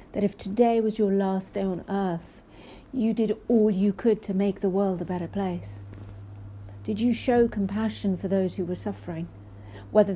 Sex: female